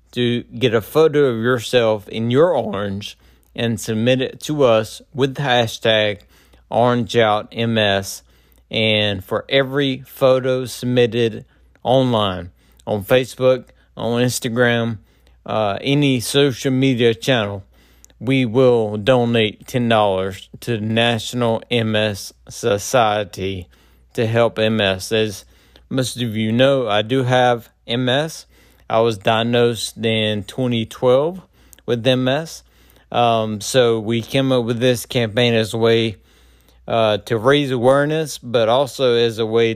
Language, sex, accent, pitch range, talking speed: English, male, American, 105-125 Hz, 120 wpm